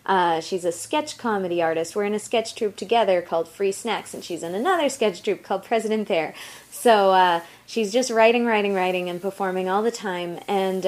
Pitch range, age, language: 175-220 Hz, 20-39, English